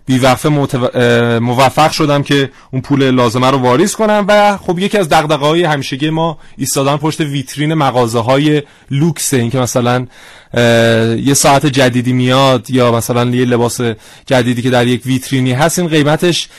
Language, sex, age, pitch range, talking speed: Persian, male, 30-49, 125-155 Hz, 145 wpm